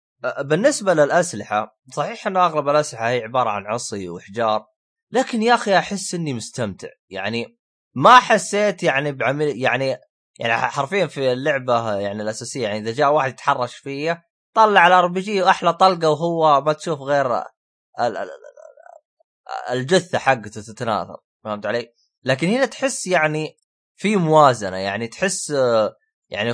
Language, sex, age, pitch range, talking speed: Arabic, male, 20-39, 115-190 Hz, 130 wpm